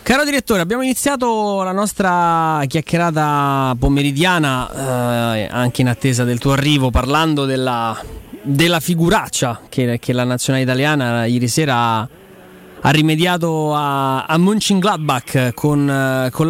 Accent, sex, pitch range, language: native, male, 125-170 Hz, Italian